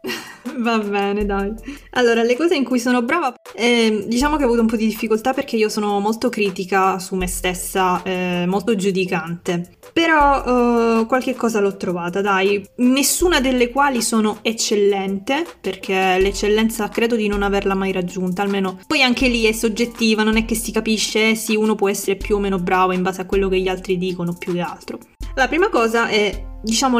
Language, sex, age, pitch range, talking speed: Italian, female, 20-39, 195-235 Hz, 190 wpm